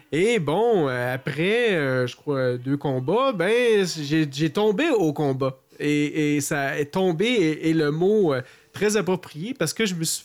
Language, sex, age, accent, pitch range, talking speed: French, male, 30-49, Canadian, 140-205 Hz, 175 wpm